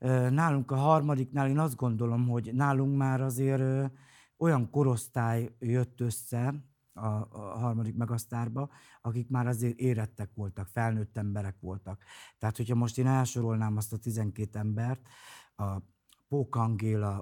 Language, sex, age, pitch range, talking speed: Hungarian, male, 50-69, 110-130 Hz, 130 wpm